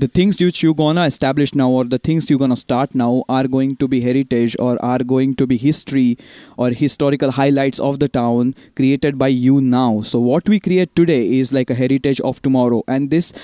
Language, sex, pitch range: English, male, 130-150 Hz